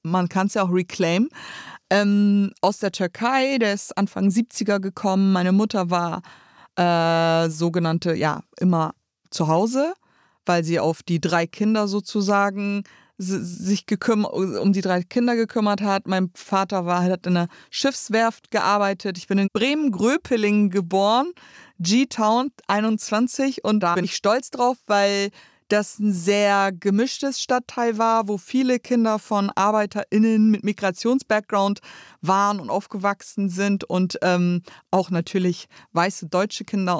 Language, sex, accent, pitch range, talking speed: German, female, German, 180-215 Hz, 140 wpm